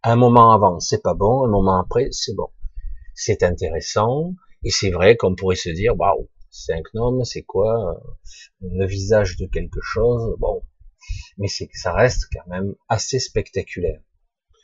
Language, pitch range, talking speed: French, 90-120 Hz, 165 wpm